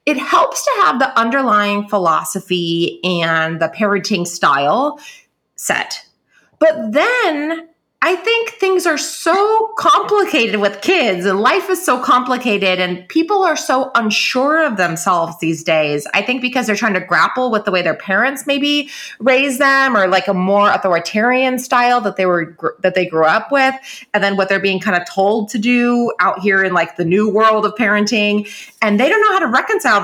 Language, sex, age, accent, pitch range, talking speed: English, female, 30-49, American, 185-275 Hz, 185 wpm